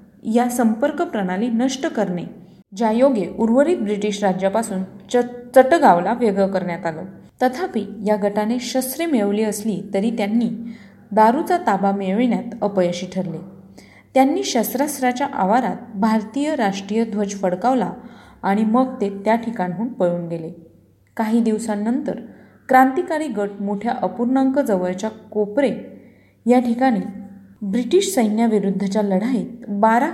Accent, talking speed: native, 110 wpm